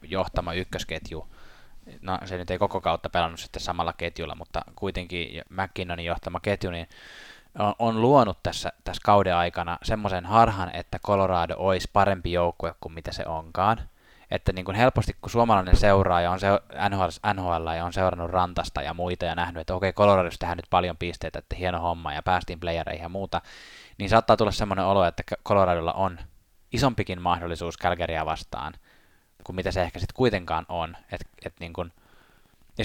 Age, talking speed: 20-39, 175 wpm